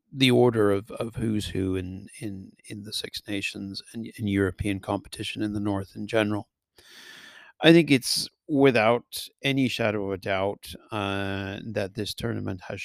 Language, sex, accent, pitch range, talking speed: English, male, American, 100-120 Hz, 165 wpm